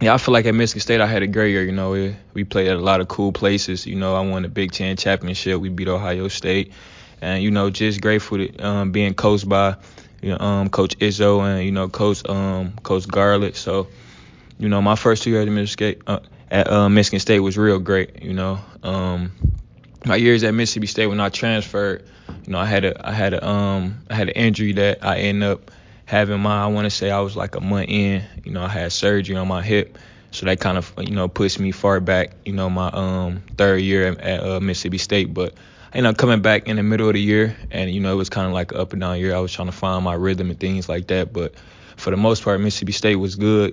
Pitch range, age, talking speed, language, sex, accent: 95-105 Hz, 20-39, 255 wpm, English, male, American